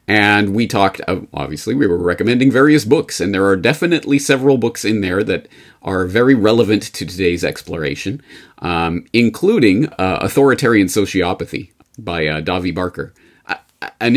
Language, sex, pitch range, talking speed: English, male, 95-145 Hz, 145 wpm